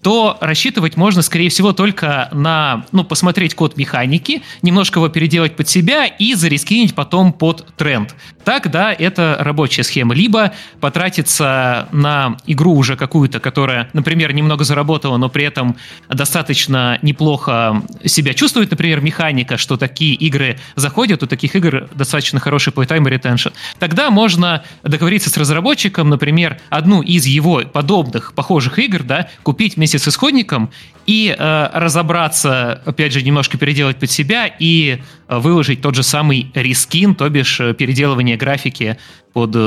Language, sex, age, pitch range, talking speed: Russian, male, 20-39, 135-175 Hz, 140 wpm